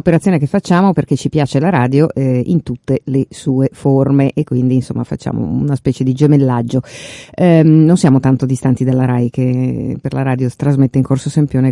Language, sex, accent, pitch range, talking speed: Italian, female, native, 135-165 Hz, 195 wpm